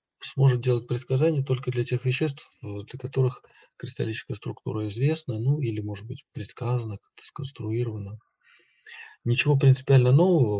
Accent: native